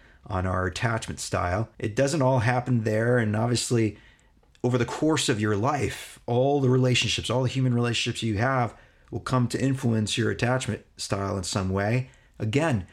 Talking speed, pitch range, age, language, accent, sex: 170 wpm, 100-125 Hz, 40-59, English, American, male